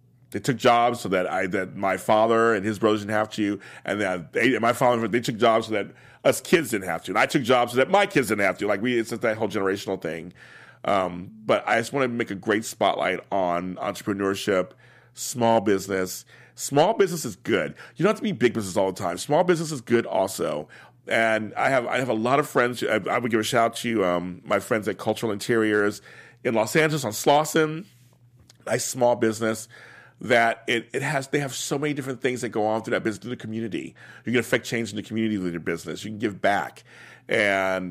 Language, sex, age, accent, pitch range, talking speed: English, male, 40-59, American, 100-125 Hz, 235 wpm